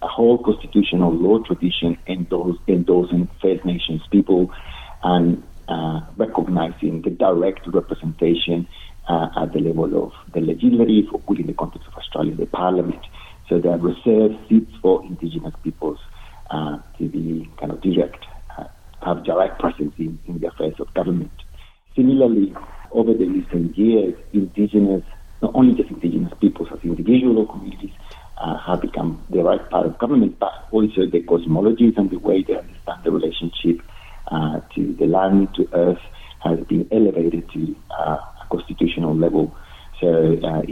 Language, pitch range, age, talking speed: English, 85-105 Hz, 50-69, 150 wpm